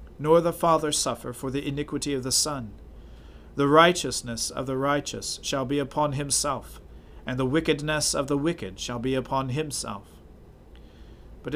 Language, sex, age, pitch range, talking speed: English, male, 40-59, 120-155 Hz, 155 wpm